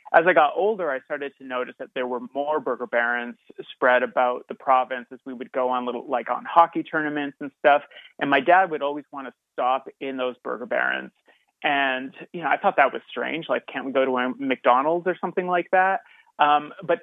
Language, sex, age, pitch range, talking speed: English, male, 30-49, 130-175 Hz, 220 wpm